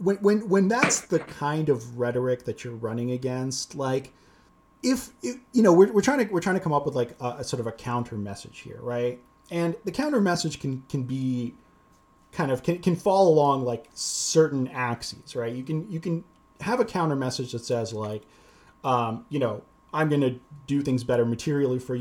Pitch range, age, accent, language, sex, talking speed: 120-160 Hz, 30-49, American, English, male, 205 wpm